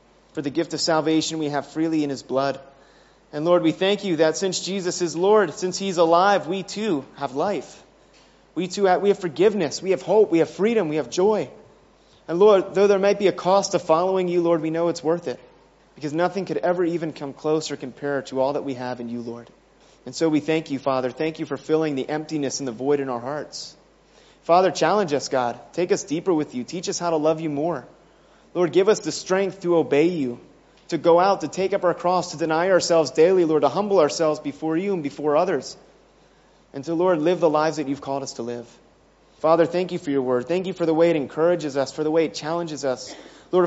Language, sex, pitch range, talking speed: English, male, 140-175 Hz, 235 wpm